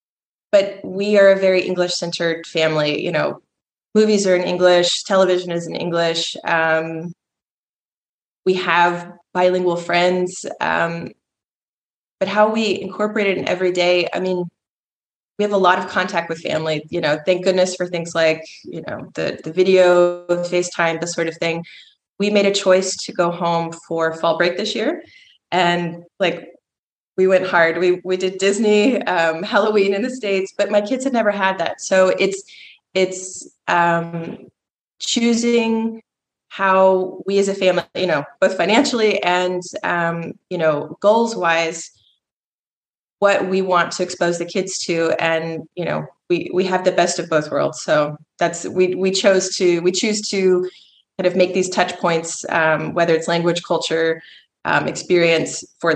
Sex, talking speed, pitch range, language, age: female, 165 wpm, 170-190 Hz, English, 20-39